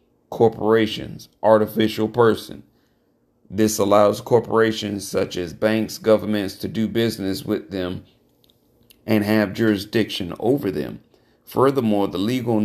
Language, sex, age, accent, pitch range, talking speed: English, male, 40-59, American, 100-110 Hz, 110 wpm